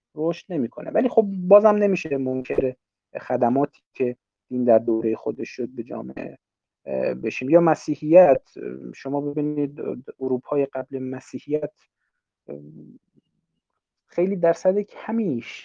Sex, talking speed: male, 105 wpm